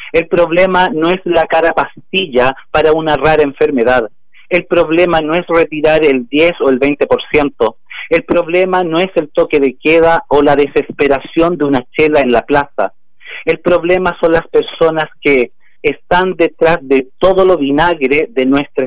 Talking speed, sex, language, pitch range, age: 165 wpm, male, Spanish, 140-175 Hz, 40-59